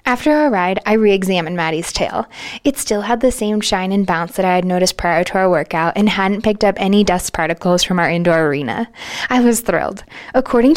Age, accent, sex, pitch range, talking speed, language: 20-39, American, female, 180-230 Hz, 210 wpm, English